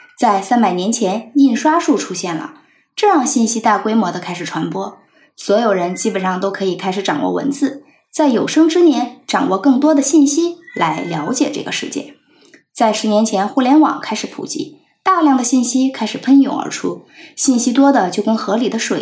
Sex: female